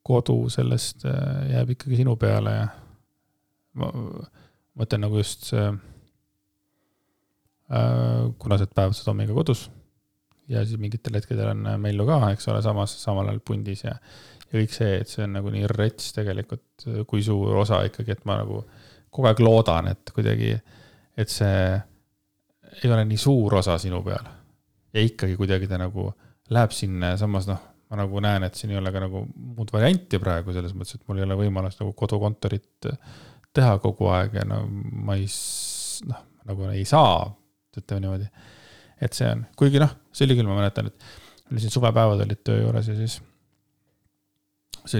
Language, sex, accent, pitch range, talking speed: English, male, Finnish, 100-120 Hz, 155 wpm